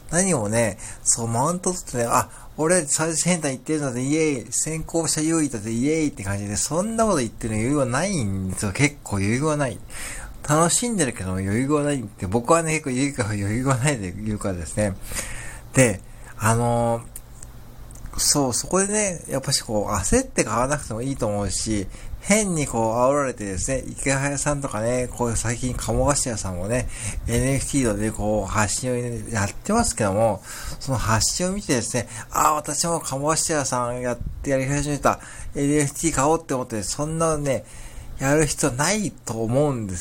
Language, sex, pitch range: Japanese, male, 110-150 Hz